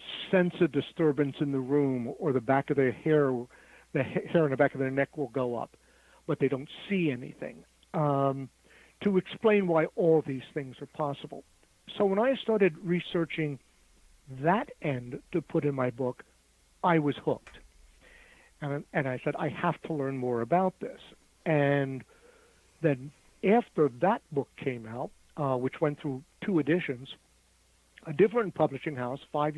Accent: American